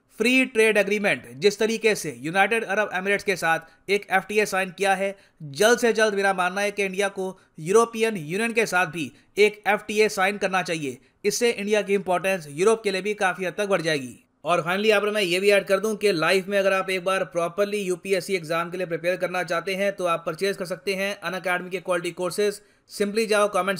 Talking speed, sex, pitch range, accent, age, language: 215 wpm, male, 180-205 Hz, native, 30-49, Hindi